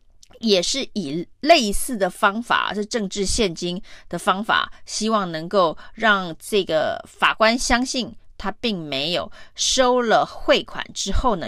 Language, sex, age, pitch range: Chinese, female, 30-49, 180-235 Hz